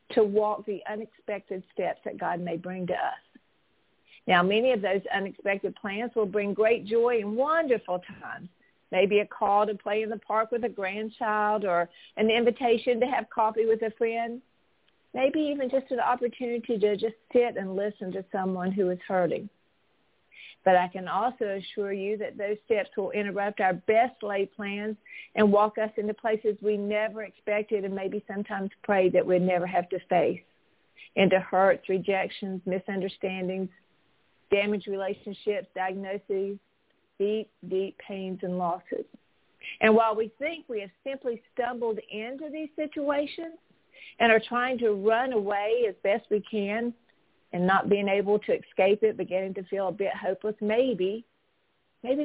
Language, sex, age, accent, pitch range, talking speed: English, female, 50-69, American, 190-230 Hz, 160 wpm